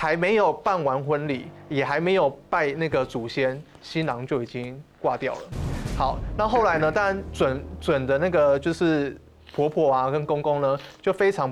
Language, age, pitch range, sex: Chinese, 20-39, 135-180 Hz, male